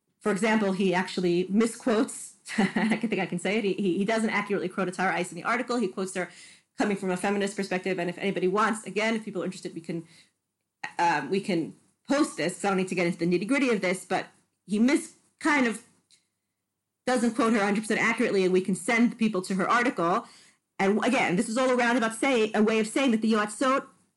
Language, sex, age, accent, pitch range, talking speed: English, female, 40-59, American, 195-275 Hz, 220 wpm